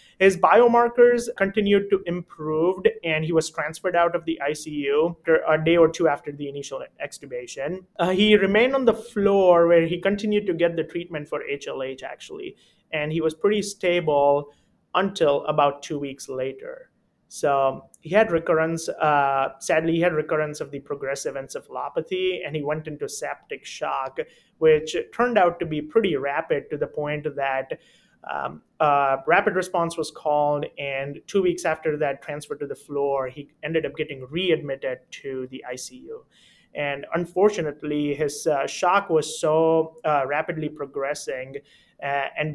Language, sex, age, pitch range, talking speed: English, male, 30-49, 145-195 Hz, 160 wpm